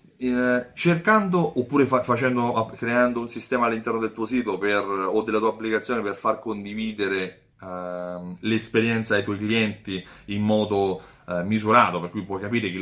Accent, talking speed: native, 150 wpm